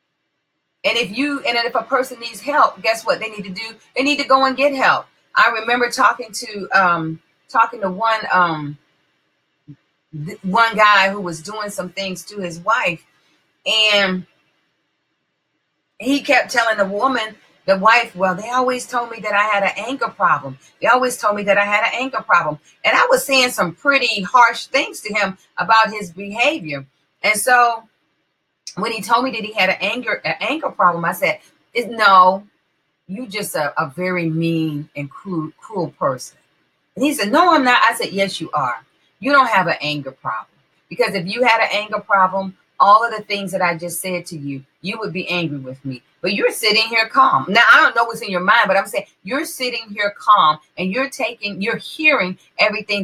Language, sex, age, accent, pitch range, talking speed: English, female, 40-59, American, 180-240 Hz, 200 wpm